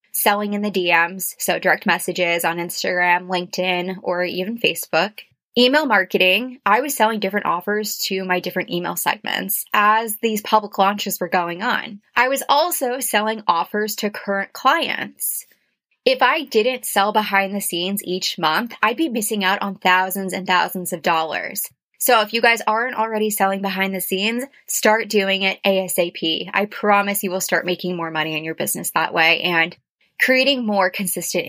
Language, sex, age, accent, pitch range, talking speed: English, female, 20-39, American, 185-220 Hz, 170 wpm